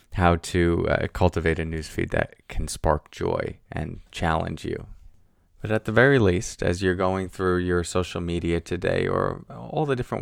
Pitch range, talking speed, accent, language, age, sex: 85-105 Hz, 175 wpm, American, English, 20-39, male